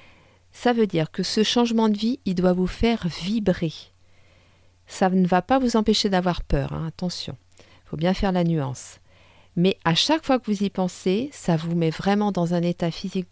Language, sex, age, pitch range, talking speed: French, female, 50-69, 160-205 Hz, 205 wpm